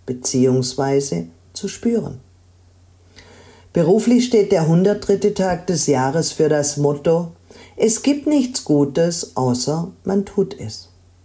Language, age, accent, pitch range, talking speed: German, 50-69, German, 125-205 Hz, 110 wpm